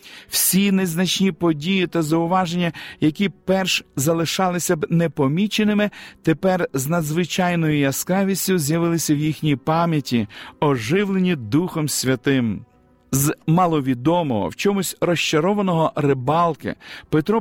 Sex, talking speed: male, 95 wpm